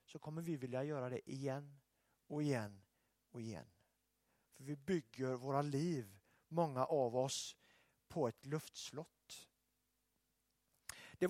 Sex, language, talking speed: male, Swedish, 120 wpm